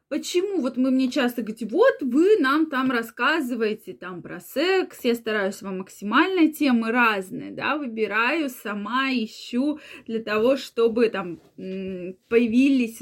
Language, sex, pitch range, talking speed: Russian, female, 230-295 Hz, 130 wpm